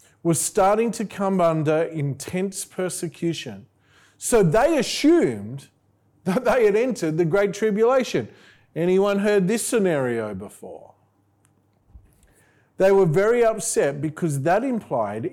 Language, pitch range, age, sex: English, 120-200 Hz, 40-59, male